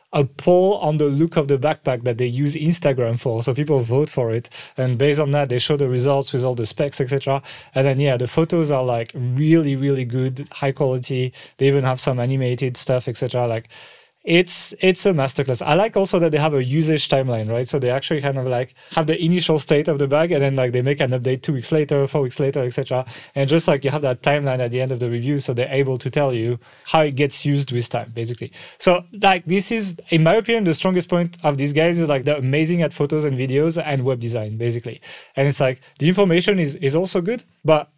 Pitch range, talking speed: 130-165 Hz, 245 wpm